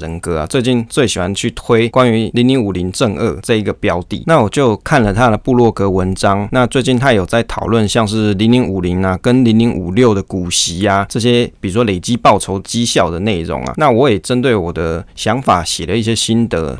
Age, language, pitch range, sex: 20-39, Chinese, 95-120 Hz, male